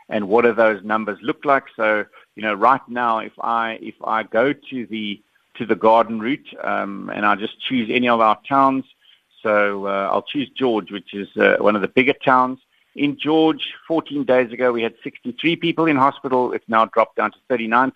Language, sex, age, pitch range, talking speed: English, male, 50-69, 110-135 Hz, 205 wpm